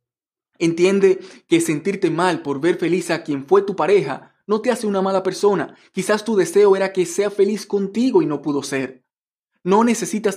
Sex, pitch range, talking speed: male, 160-195 Hz, 185 wpm